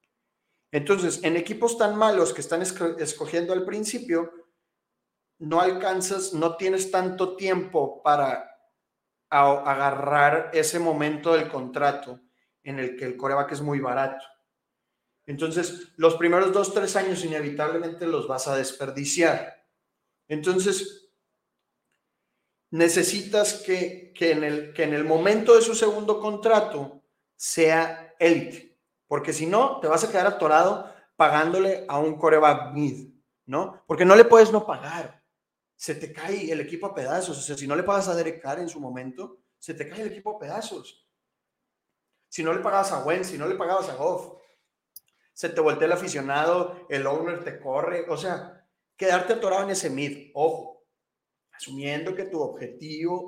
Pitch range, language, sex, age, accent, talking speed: 145-190 Hz, Spanish, male, 40-59, Mexican, 150 wpm